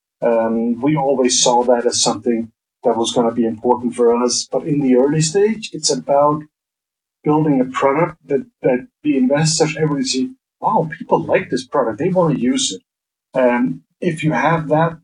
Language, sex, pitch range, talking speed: English, male, 120-150 Hz, 185 wpm